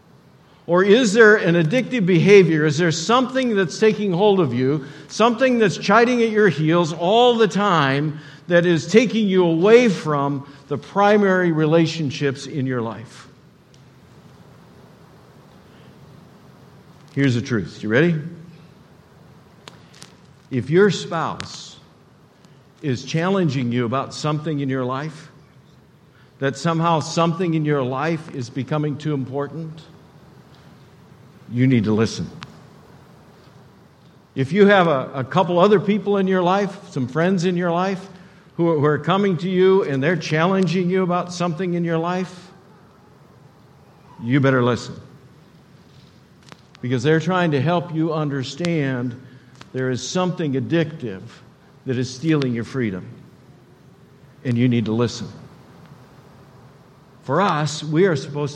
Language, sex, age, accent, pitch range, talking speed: English, male, 50-69, American, 140-185 Hz, 130 wpm